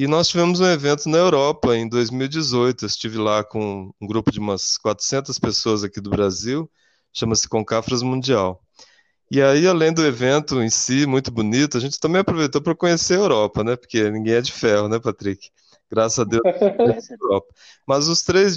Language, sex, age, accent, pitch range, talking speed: Portuguese, male, 20-39, Brazilian, 110-150 Hz, 190 wpm